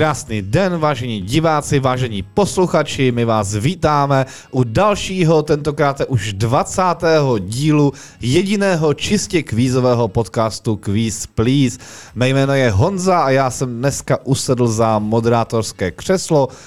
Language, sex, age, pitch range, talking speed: Czech, male, 20-39, 115-155 Hz, 115 wpm